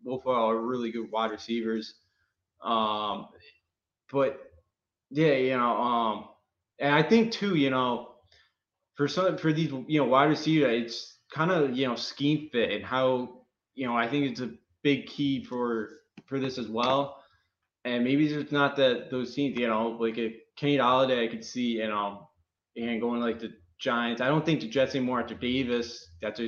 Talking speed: 195 wpm